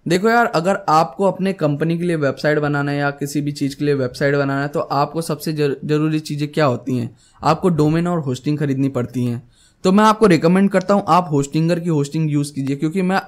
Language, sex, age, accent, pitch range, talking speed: Hindi, male, 10-29, native, 140-175 Hz, 220 wpm